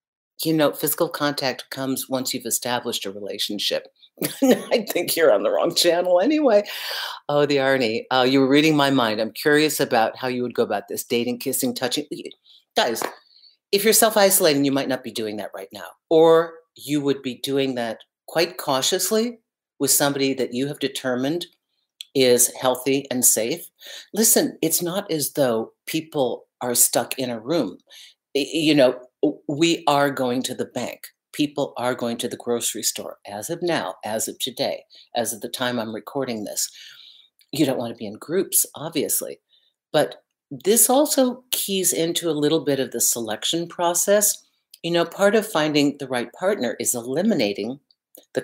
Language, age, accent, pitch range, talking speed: English, 50-69, American, 130-175 Hz, 170 wpm